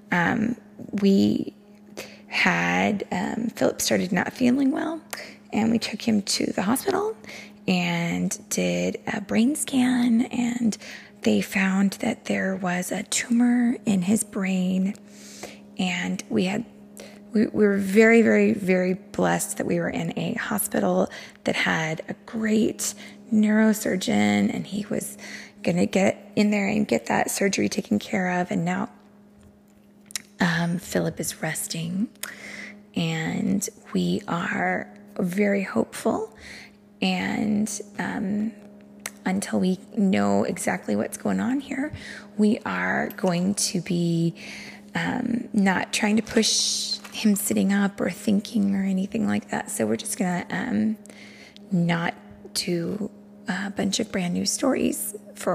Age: 20-39